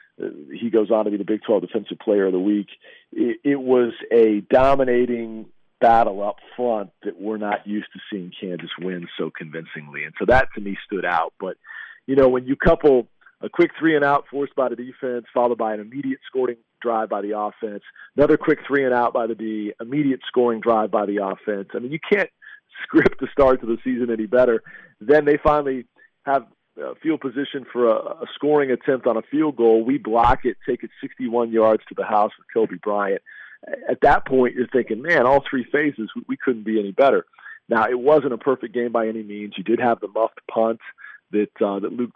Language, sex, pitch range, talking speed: English, male, 110-150 Hz, 215 wpm